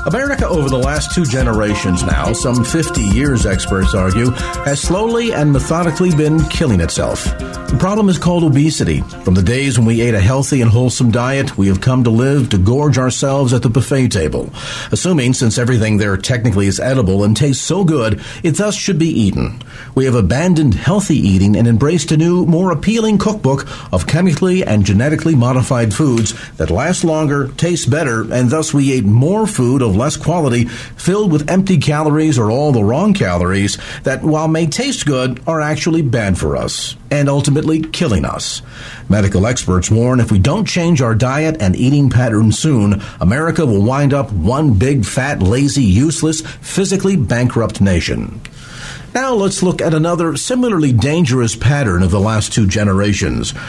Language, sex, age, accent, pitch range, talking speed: English, male, 50-69, American, 110-160 Hz, 175 wpm